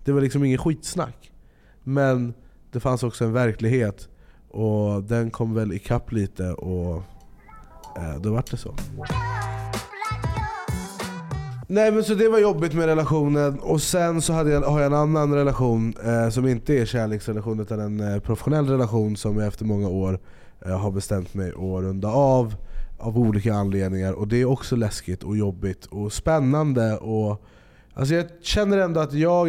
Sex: male